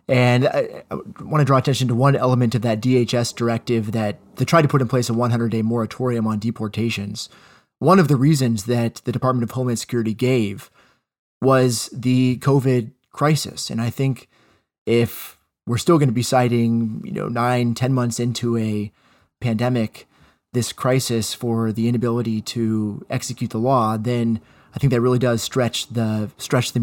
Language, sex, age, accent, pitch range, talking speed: English, male, 30-49, American, 110-130 Hz, 170 wpm